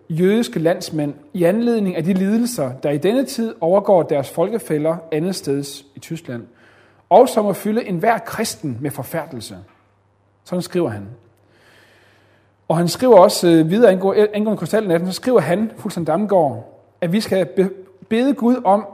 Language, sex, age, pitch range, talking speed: Danish, male, 30-49, 125-200 Hz, 150 wpm